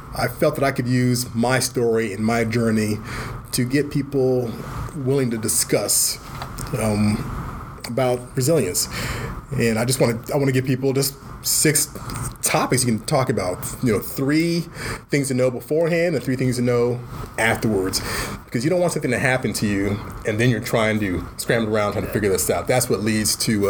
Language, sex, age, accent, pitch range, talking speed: English, male, 30-49, American, 110-130 Hz, 185 wpm